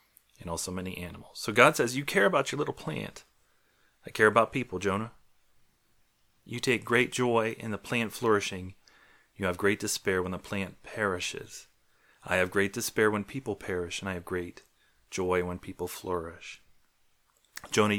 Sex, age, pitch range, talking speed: male, 30-49, 100-120 Hz, 165 wpm